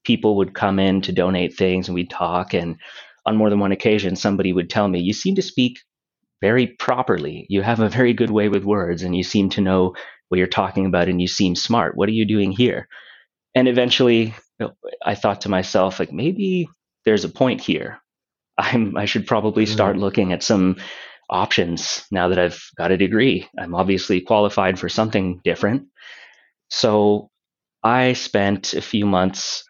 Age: 30-49